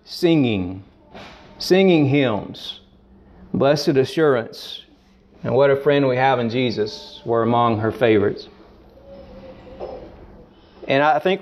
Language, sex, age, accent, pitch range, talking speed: Bengali, male, 40-59, American, 130-180 Hz, 105 wpm